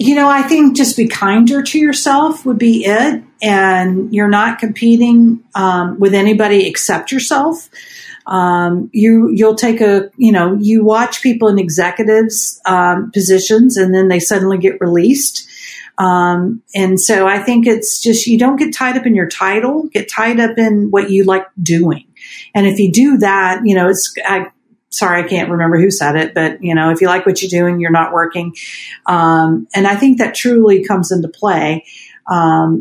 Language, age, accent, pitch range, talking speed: English, 40-59, American, 175-225 Hz, 190 wpm